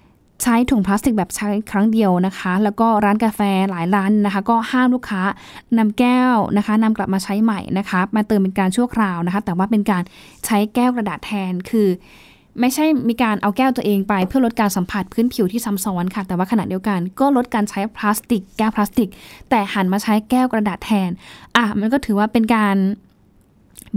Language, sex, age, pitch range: Thai, female, 10-29, 200-235 Hz